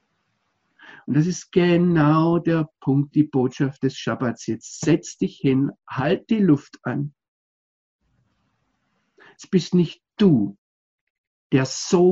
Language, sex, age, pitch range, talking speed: German, male, 50-69, 130-180 Hz, 120 wpm